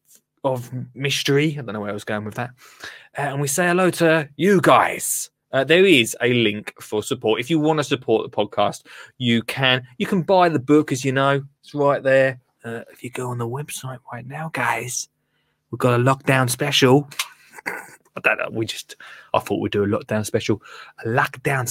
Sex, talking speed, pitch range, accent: male, 200 wpm, 120-170 Hz, British